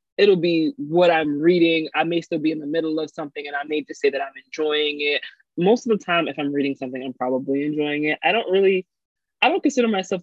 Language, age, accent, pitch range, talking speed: English, 20-39, American, 150-210 Hz, 245 wpm